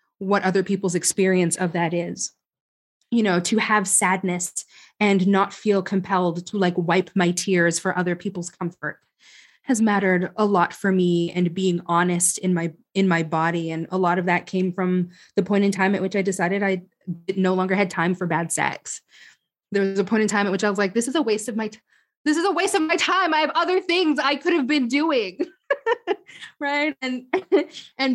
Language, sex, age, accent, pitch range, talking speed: English, female, 20-39, American, 185-250 Hz, 210 wpm